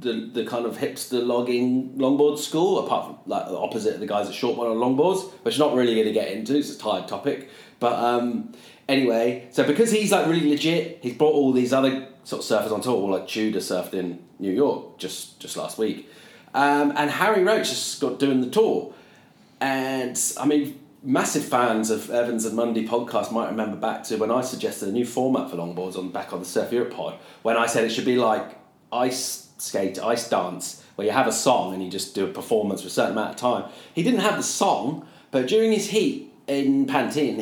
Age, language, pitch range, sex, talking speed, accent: 30-49, English, 120-155 Hz, male, 225 wpm, British